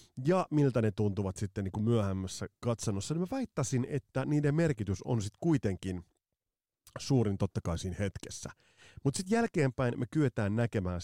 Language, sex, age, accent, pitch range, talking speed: Finnish, male, 30-49, native, 95-140 Hz, 150 wpm